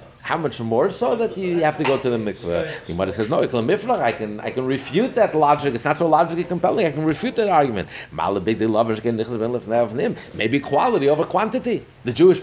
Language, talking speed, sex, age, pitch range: English, 190 wpm, male, 50-69, 120-175 Hz